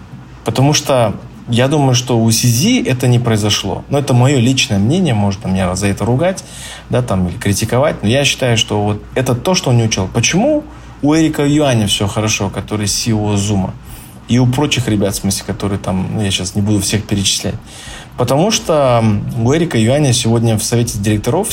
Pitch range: 105-130 Hz